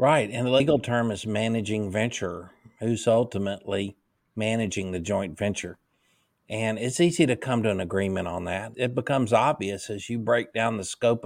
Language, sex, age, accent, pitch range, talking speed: English, male, 50-69, American, 105-125 Hz, 175 wpm